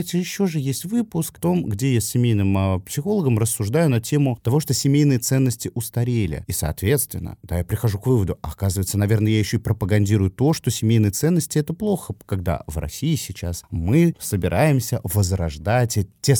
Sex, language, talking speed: male, Russian, 175 wpm